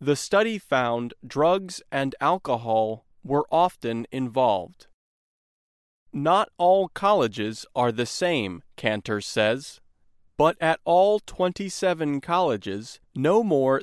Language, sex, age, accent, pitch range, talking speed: English, male, 30-49, American, 120-175 Hz, 105 wpm